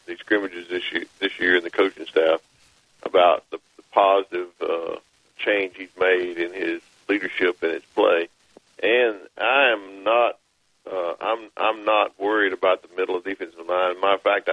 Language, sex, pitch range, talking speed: English, male, 305-465 Hz, 175 wpm